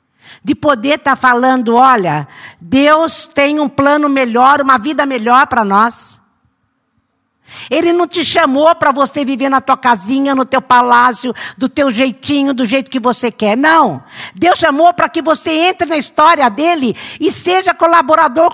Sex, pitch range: female, 235-300 Hz